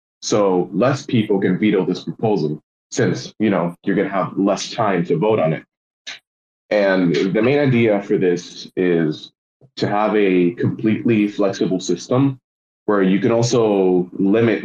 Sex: male